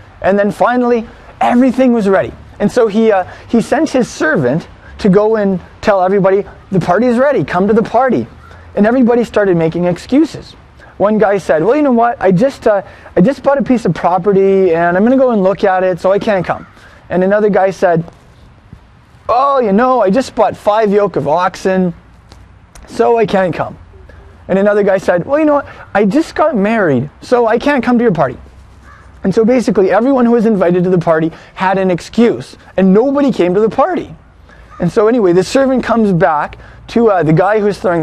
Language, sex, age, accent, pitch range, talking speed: English, male, 20-39, American, 165-230 Hz, 210 wpm